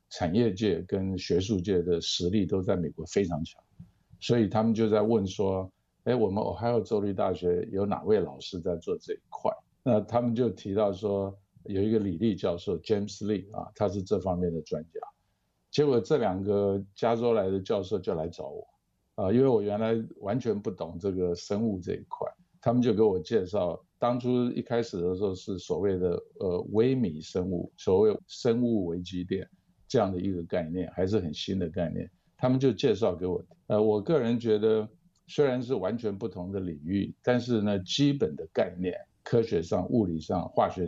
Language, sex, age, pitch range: Chinese, male, 50-69, 95-120 Hz